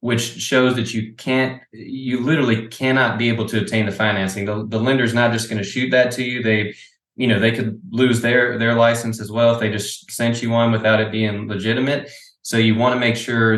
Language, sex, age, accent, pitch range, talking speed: English, male, 20-39, American, 110-125 Hz, 230 wpm